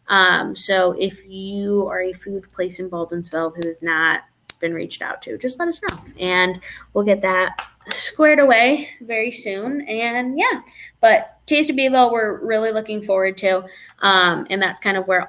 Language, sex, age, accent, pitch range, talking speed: English, female, 20-39, American, 170-205 Hz, 180 wpm